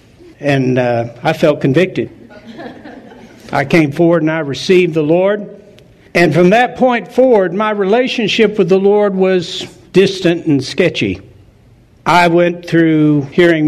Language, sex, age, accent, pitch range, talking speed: English, male, 60-79, American, 140-220 Hz, 135 wpm